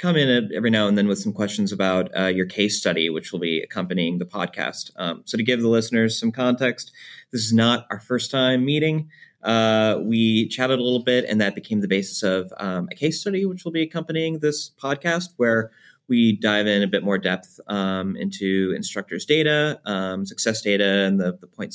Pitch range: 95-125 Hz